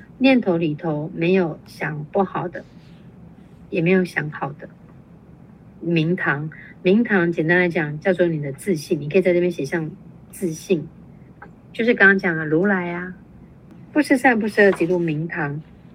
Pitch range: 165-190 Hz